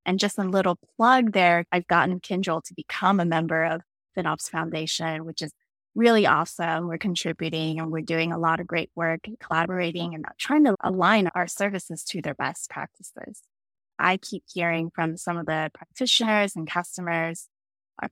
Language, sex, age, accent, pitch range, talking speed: English, female, 20-39, American, 165-195 Hz, 175 wpm